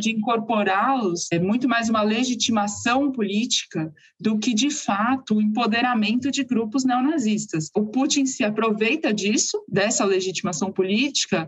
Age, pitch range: 20-39, 200-255 Hz